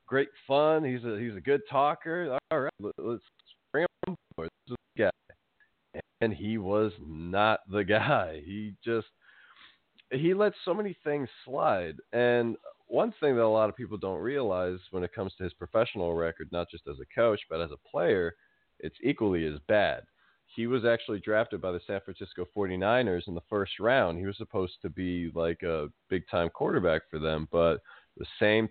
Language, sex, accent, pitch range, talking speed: English, male, American, 90-115 Hz, 190 wpm